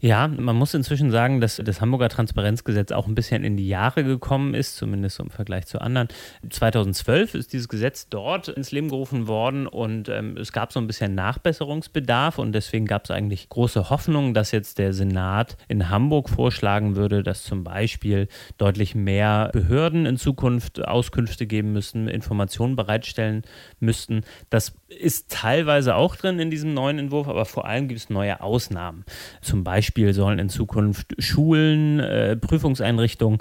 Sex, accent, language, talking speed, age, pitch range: male, German, German, 165 wpm, 30-49, 105-130 Hz